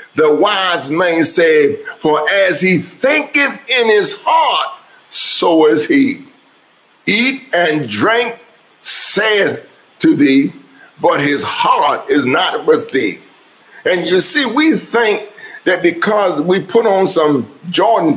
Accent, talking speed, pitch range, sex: American, 130 wpm, 190-315 Hz, male